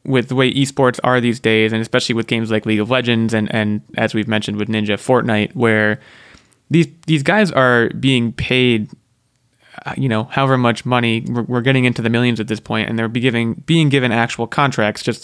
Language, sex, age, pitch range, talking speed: English, male, 20-39, 110-130 Hz, 210 wpm